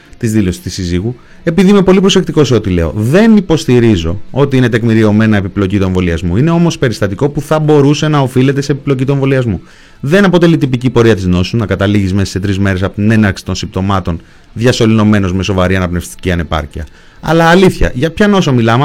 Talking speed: 190 wpm